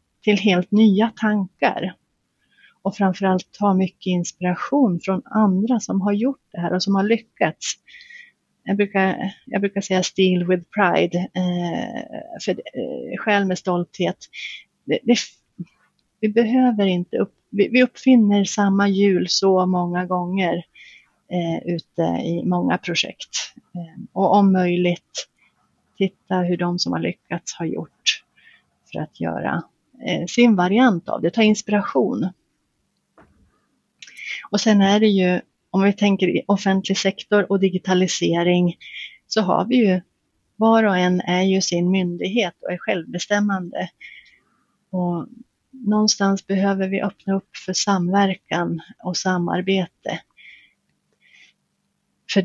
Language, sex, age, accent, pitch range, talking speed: Swedish, female, 30-49, native, 180-210 Hz, 130 wpm